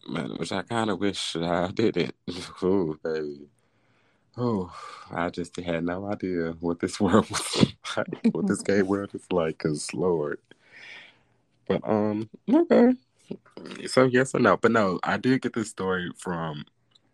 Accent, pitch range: American, 85-100 Hz